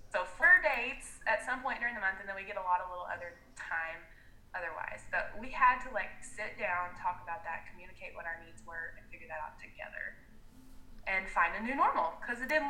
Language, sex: English, female